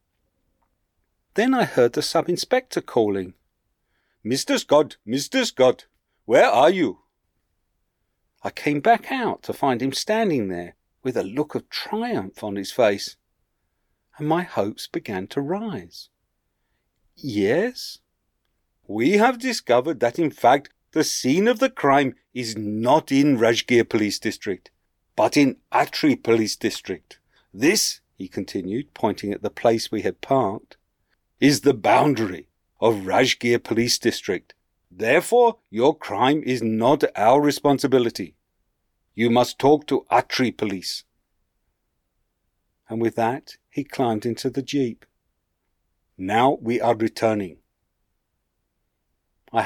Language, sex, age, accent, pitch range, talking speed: English, male, 50-69, British, 105-140 Hz, 125 wpm